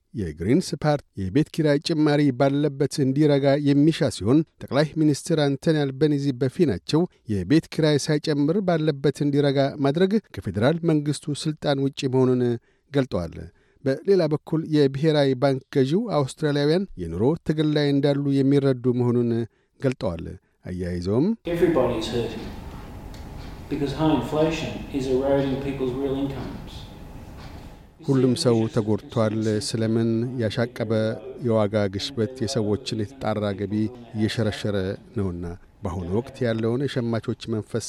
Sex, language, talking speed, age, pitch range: male, Amharic, 85 wpm, 60-79, 110-145 Hz